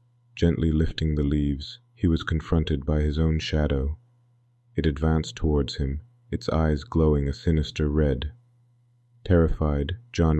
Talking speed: 135 wpm